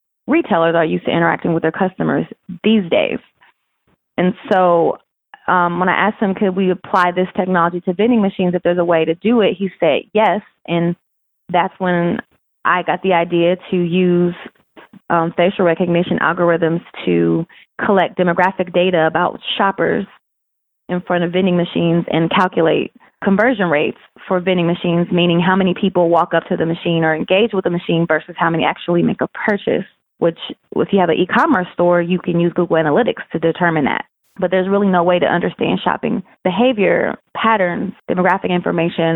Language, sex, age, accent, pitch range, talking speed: English, female, 20-39, American, 170-190 Hz, 175 wpm